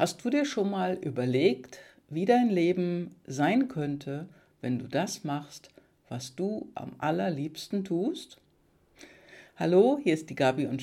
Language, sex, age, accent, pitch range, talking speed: German, female, 60-79, German, 140-190 Hz, 145 wpm